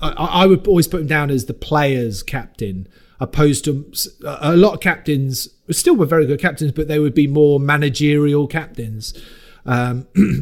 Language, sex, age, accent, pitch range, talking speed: English, male, 30-49, British, 130-155 Hz, 165 wpm